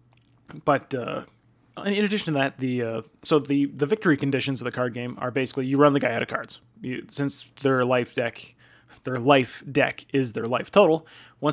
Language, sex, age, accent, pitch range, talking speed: English, male, 20-39, American, 125-145 Hz, 200 wpm